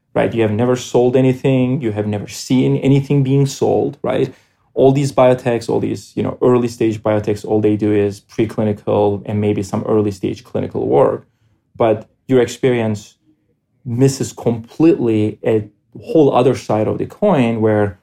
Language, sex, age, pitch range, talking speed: English, male, 20-39, 105-125 Hz, 165 wpm